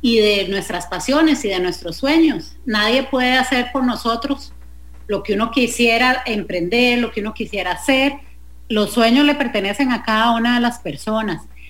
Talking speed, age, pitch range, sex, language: 170 wpm, 40-59, 185-245 Hz, female, English